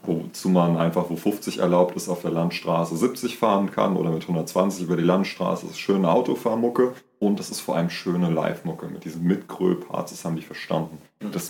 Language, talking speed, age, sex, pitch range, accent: German, 210 wpm, 30-49, male, 90-120 Hz, German